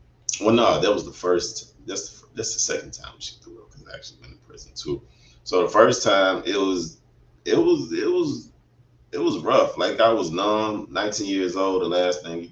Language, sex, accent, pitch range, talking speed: English, male, American, 70-85 Hz, 220 wpm